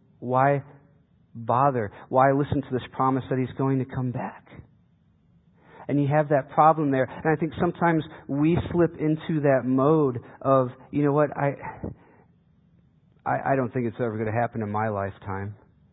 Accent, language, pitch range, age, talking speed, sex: American, English, 120-150 Hz, 40-59, 170 wpm, male